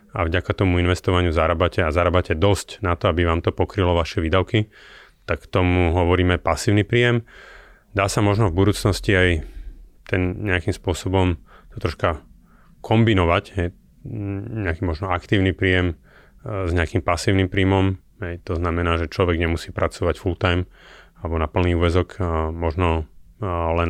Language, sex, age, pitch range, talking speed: Slovak, male, 30-49, 85-95 Hz, 140 wpm